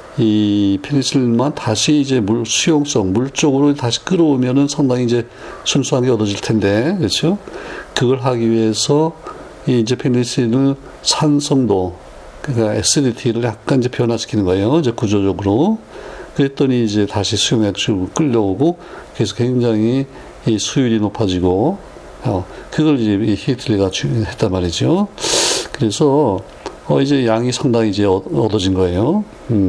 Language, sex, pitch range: Korean, male, 105-140 Hz